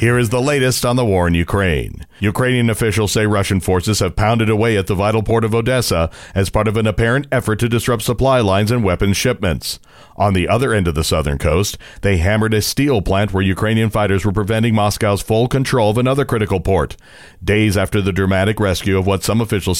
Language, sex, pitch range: English, male, 95-115 Hz